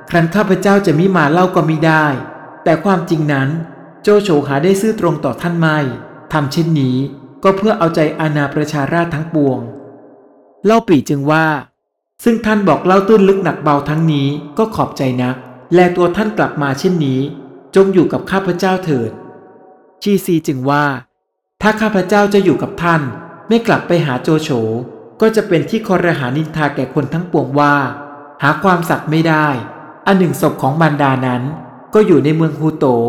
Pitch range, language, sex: 140-180 Hz, Thai, male